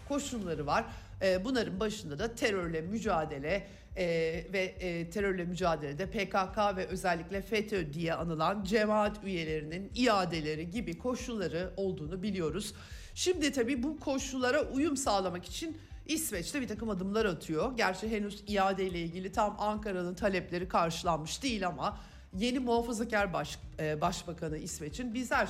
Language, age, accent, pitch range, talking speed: Turkish, 50-69, native, 175-225 Hz, 120 wpm